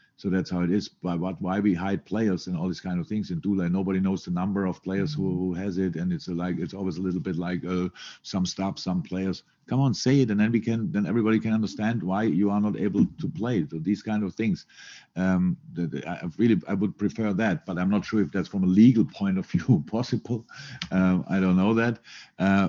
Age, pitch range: 50-69, 90-110 Hz